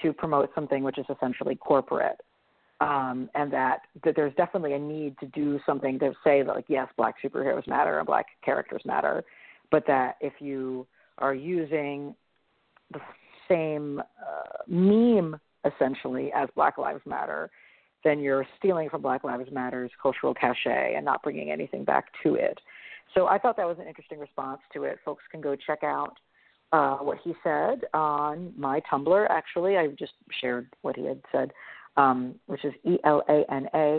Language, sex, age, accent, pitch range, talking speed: English, female, 40-59, American, 135-175 Hz, 170 wpm